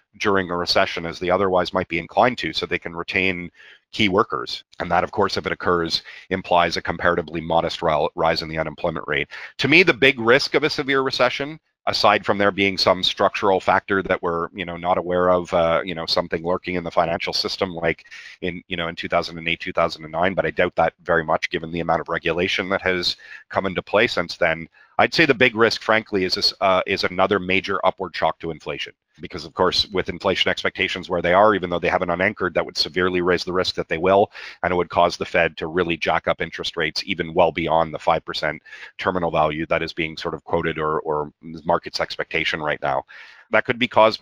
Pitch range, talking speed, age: 85-105 Hz, 220 wpm, 40-59